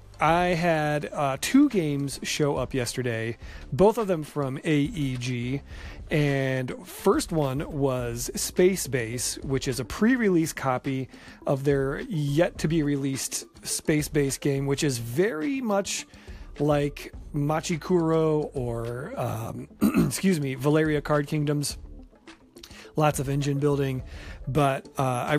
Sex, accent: male, American